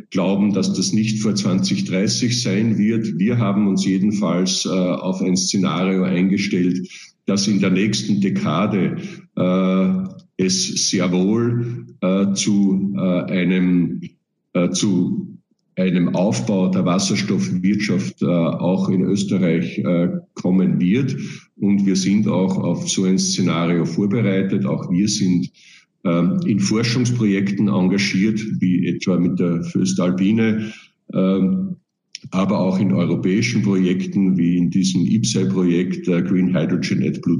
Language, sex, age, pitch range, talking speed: German, male, 50-69, 90-105 Hz, 125 wpm